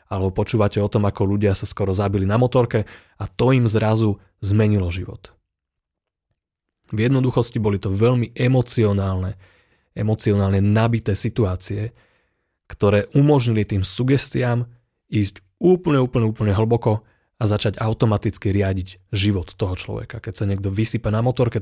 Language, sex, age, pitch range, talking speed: Slovak, male, 30-49, 100-120 Hz, 135 wpm